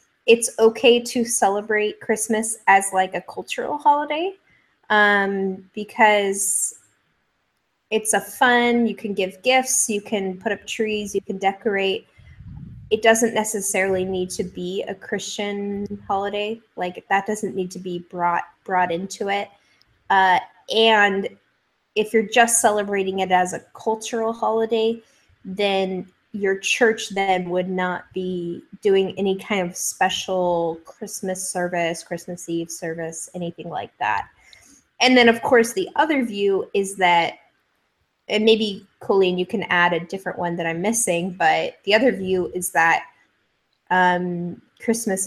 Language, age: English, 10-29